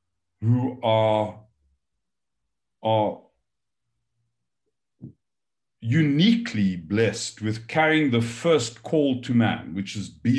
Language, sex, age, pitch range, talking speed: English, male, 50-69, 115-170 Hz, 85 wpm